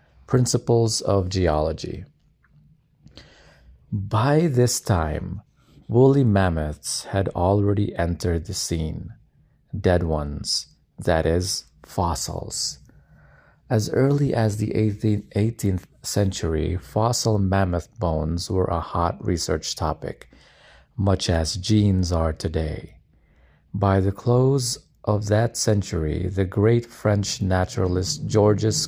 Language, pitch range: English, 85-125 Hz